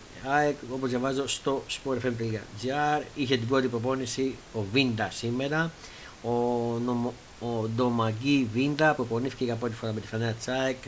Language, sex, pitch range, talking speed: Greek, male, 115-135 Hz, 140 wpm